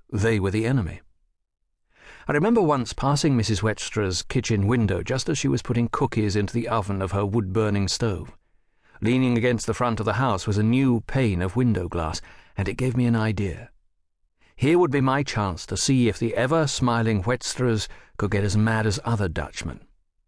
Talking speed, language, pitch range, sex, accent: 185 wpm, English, 100-125 Hz, male, British